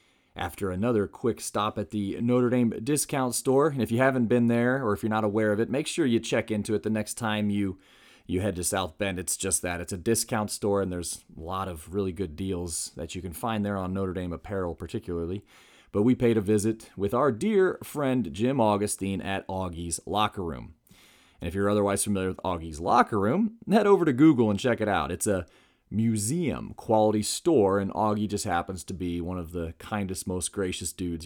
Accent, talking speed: American, 215 wpm